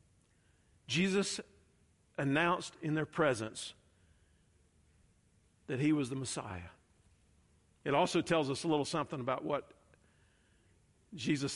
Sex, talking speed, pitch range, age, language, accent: male, 105 wpm, 95-150 Hz, 50-69, English, American